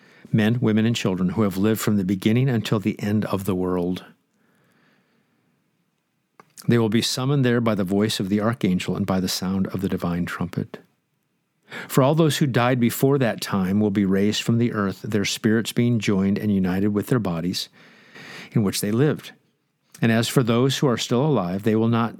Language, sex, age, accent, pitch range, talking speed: English, male, 50-69, American, 105-135 Hz, 195 wpm